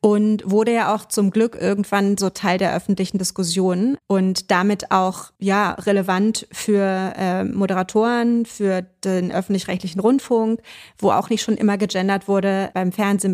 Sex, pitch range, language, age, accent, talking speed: female, 195-225 Hz, German, 30-49, German, 150 wpm